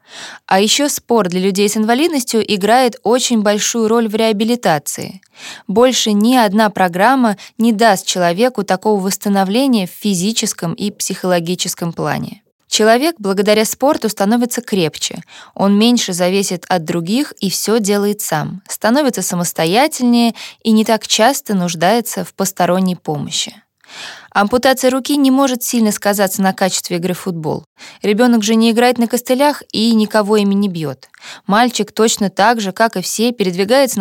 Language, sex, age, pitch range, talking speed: Russian, female, 20-39, 190-235 Hz, 145 wpm